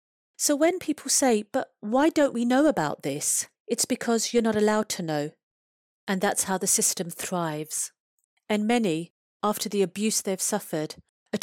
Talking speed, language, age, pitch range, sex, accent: 170 wpm, English, 40-59, 170-220 Hz, female, British